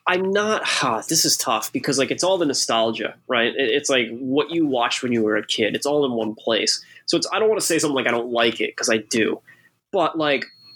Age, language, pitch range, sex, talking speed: 20-39, English, 115-150 Hz, male, 260 wpm